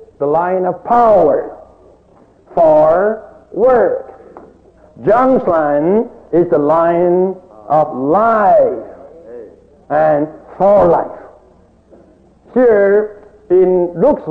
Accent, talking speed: American, 80 wpm